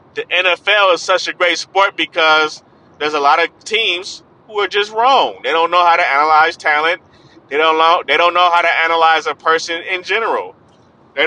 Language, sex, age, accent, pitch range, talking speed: English, male, 20-39, American, 155-185 Hz, 190 wpm